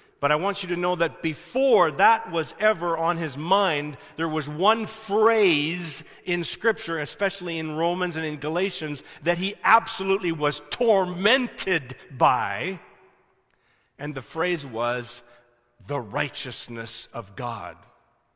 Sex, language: male, English